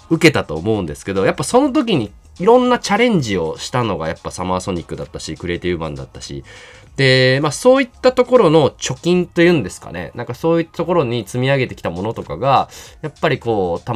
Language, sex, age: Japanese, male, 20-39